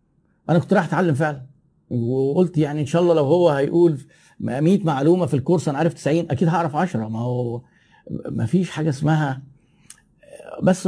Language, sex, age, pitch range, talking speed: Arabic, male, 50-69, 135-175 Hz, 165 wpm